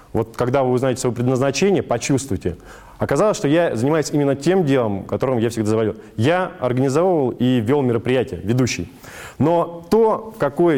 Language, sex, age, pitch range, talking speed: Russian, male, 20-39, 115-160 Hz, 155 wpm